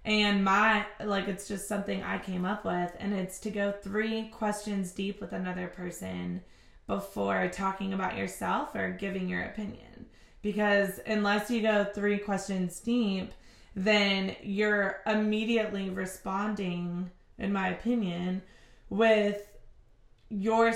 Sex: female